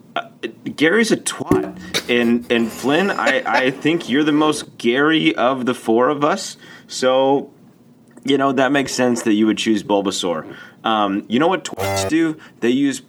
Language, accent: English, American